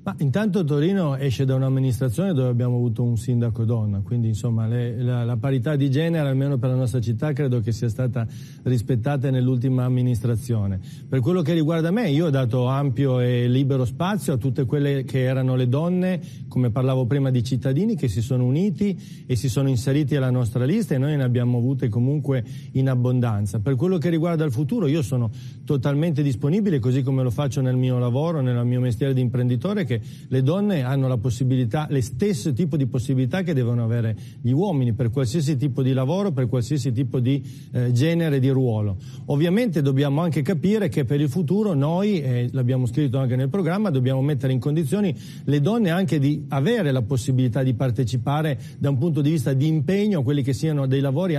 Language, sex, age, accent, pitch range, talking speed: Italian, male, 30-49, native, 125-155 Hz, 195 wpm